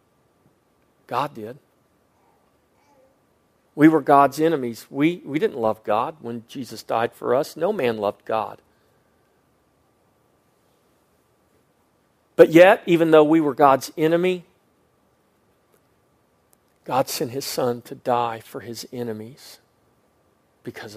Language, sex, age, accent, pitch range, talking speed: English, male, 40-59, American, 115-145 Hz, 110 wpm